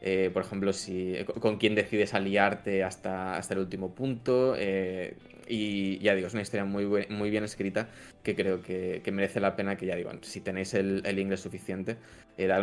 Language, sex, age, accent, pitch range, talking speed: English, male, 20-39, Spanish, 95-105 Hz, 205 wpm